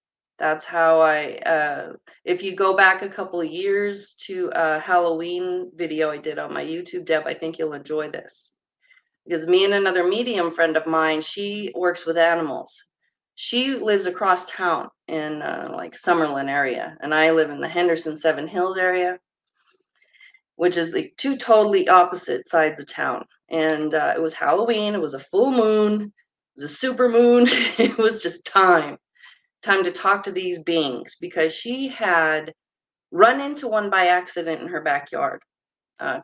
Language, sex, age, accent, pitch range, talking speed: English, female, 30-49, American, 160-210 Hz, 170 wpm